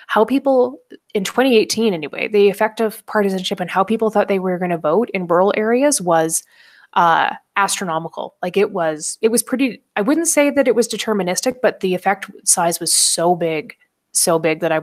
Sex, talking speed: female, 195 wpm